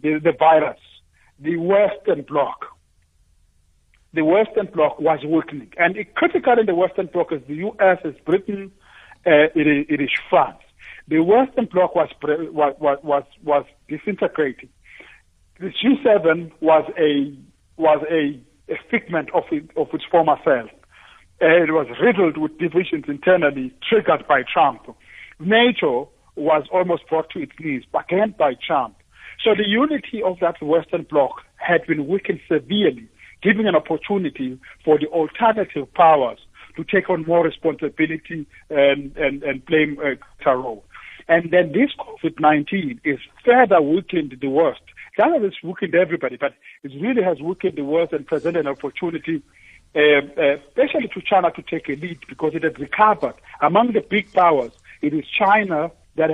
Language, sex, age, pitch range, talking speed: English, male, 60-79, 145-195 Hz, 150 wpm